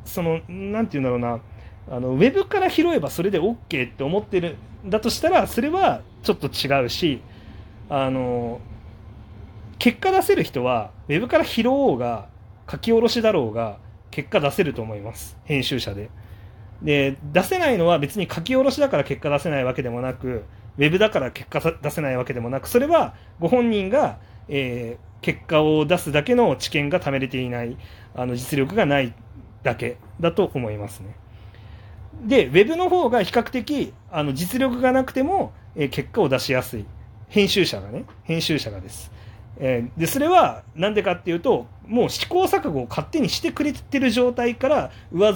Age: 30-49